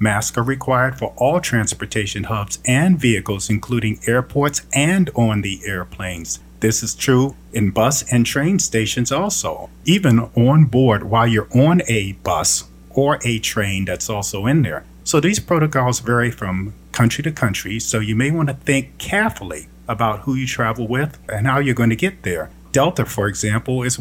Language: English